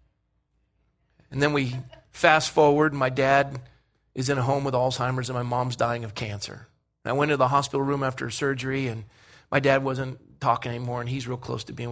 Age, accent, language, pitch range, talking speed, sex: 40-59, American, English, 115-135 Hz, 205 wpm, male